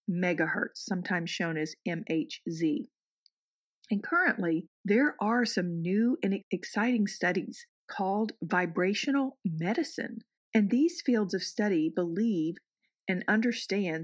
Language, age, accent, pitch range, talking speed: English, 50-69, American, 180-235 Hz, 105 wpm